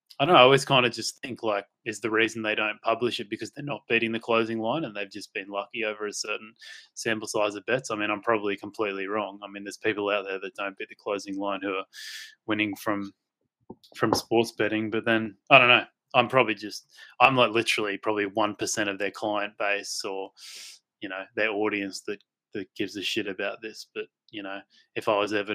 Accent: Australian